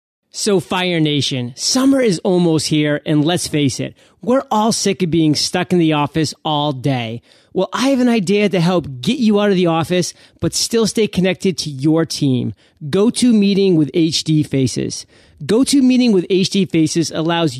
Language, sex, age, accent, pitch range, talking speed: English, male, 30-49, American, 155-205 Hz, 190 wpm